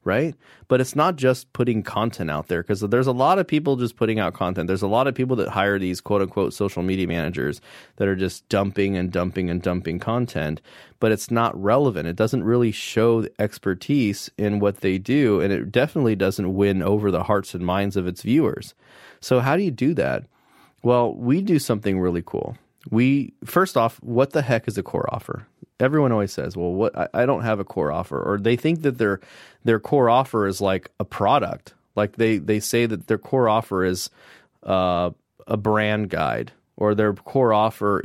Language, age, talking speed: English, 30-49, 205 wpm